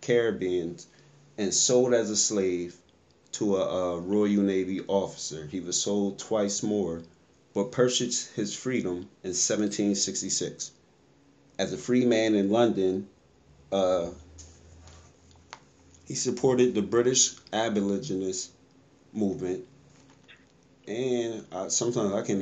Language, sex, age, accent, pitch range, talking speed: English, male, 30-49, American, 90-110 Hz, 105 wpm